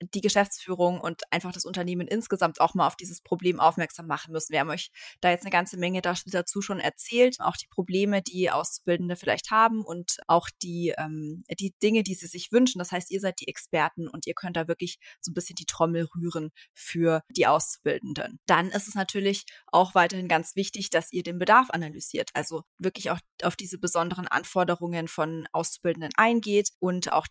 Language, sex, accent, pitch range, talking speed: German, female, German, 170-200 Hz, 190 wpm